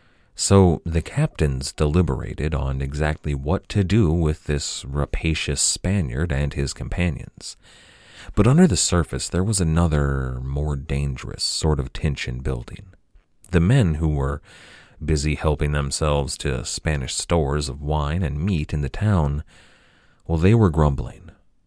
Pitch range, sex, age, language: 75-95 Hz, male, 30-49, English